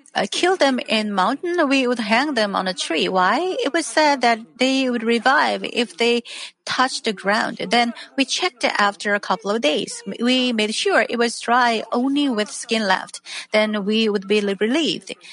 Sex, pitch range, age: female, 210-265 Hz, 40-59